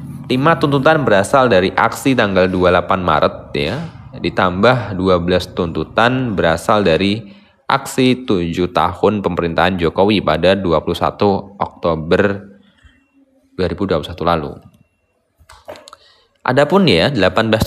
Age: 20-39